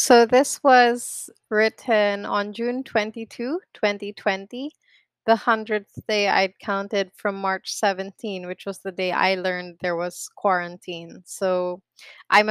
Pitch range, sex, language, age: 180-220 Hz, female, English, 20-39